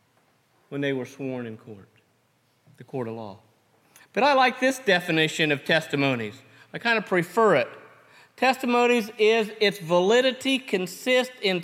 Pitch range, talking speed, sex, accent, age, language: 145-210 Hz, 145 wpm, male, American, 40-59, English